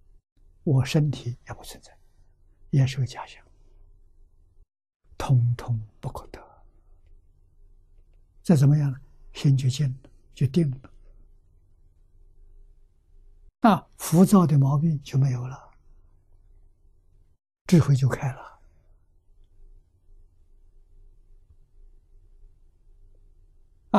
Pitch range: 85-125 Hz